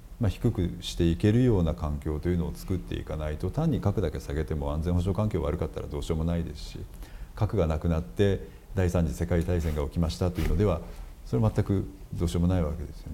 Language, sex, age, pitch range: Japanese, male, 50-69, 80-100 Hz